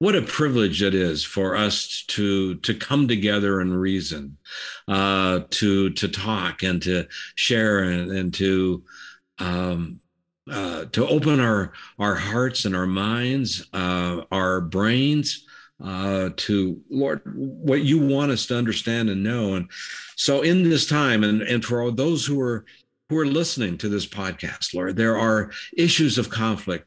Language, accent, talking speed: English, American, 160 wpm